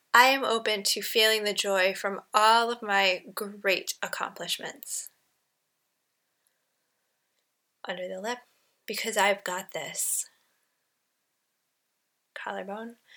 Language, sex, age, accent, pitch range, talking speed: English, female, 10-29, American, 195-250 Hz, 95 wpm